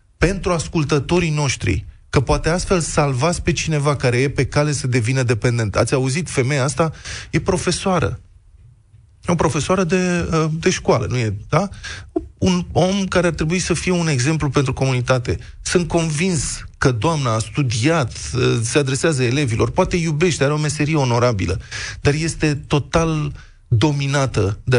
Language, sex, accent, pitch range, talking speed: Romanian, male, native, 110-160 Hz, 150 wpm